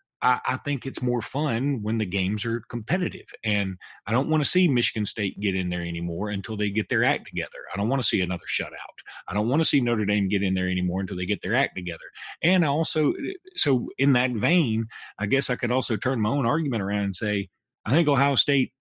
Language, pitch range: English, 100-130 Hz